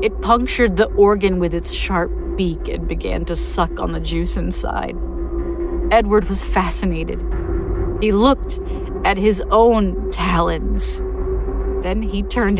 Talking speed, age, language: 135 wpm, 40-59, English